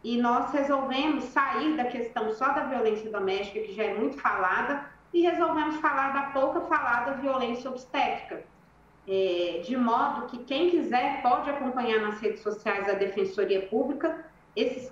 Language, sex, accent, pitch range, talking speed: Portuguese, female, Brazilian, 215-275 Hz, 155 wpm